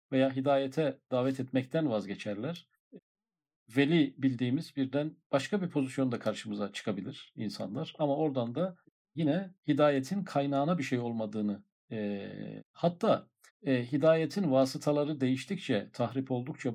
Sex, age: male, 50-69